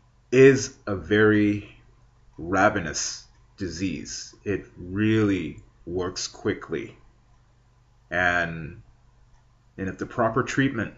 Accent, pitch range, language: American, 100-120 Hz, English